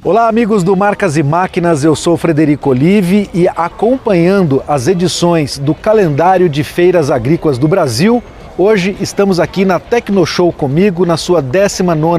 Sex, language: male, Portuguese